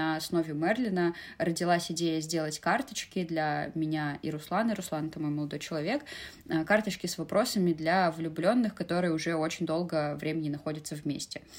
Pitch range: 165-205 Hz